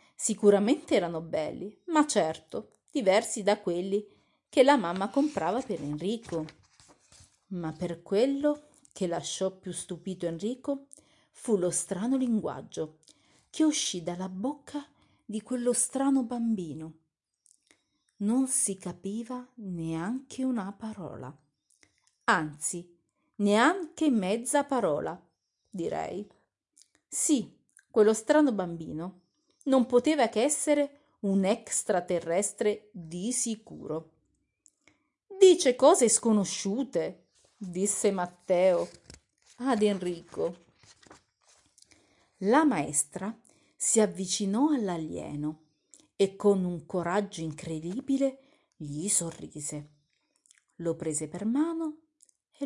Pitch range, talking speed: 175-260 Hz, 90 wpm